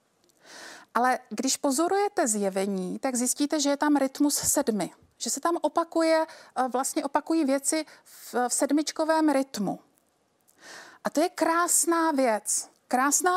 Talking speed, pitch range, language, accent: 120 wpm, 240-305 Hz, Czech, native